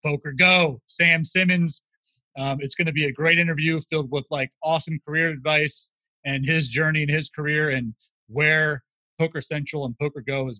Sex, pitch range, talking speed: male, 140-175 Hz, 180 wpm